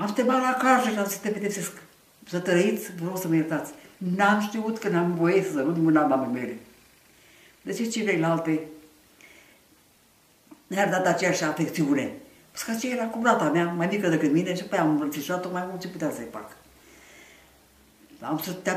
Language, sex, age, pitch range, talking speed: English, female, 60-79, 155-200 Hz, 180 wpm